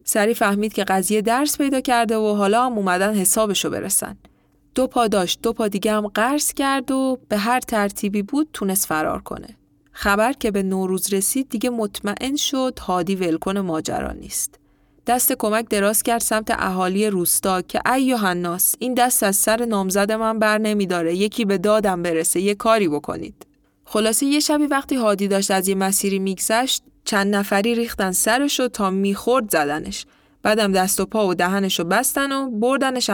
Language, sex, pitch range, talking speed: Persian, female, 190-250 Hz, 165 wpm